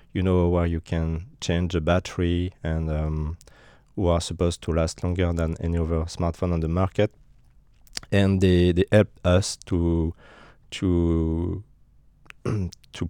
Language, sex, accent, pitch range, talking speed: Danish, male, French, 85-100 Hz, 140 wpm